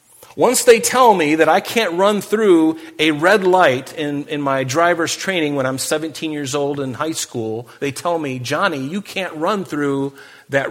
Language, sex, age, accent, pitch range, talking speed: English, male, 50-69, American, 135-185 Hz, 190 wpm